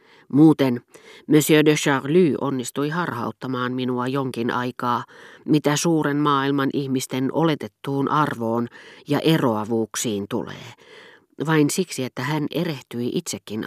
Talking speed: 105 wpm